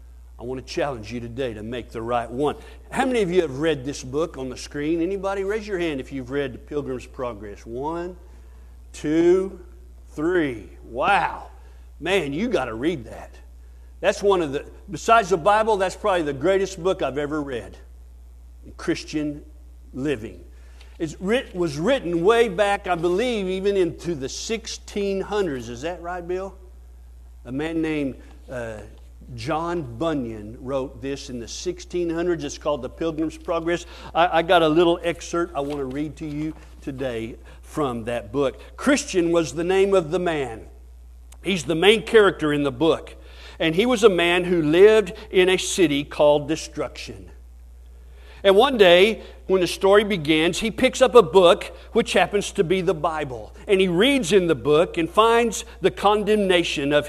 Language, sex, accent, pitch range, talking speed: English, male, American, 120-190 Hz, 170 wpm